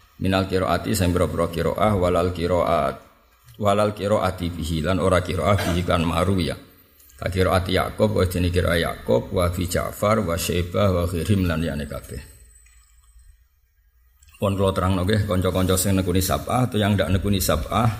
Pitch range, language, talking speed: 85-105 Hz, Indonesian, 155 wpm